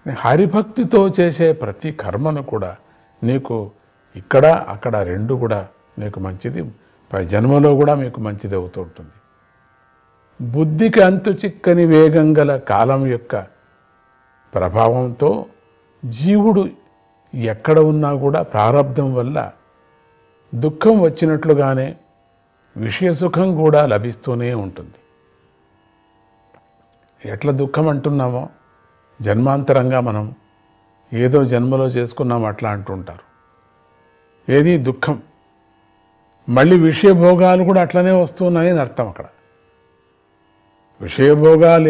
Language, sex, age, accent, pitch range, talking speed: Telugu, male, 50-69, native, 105-150 Hz, 85 wpm